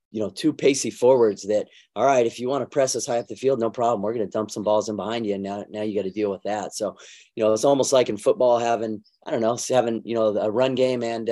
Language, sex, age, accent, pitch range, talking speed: English, male, 30-49, American, 105-120 Hz, 300 wpm